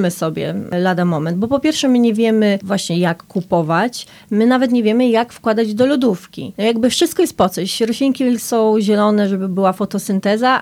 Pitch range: 190-235 Hz